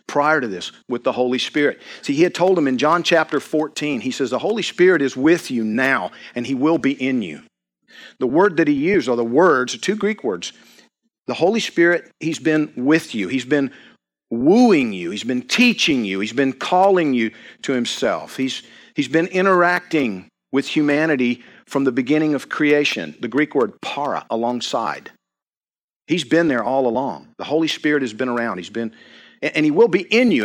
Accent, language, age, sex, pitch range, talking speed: American, English, 50-69, male, 125-185 Hz, 195 wpm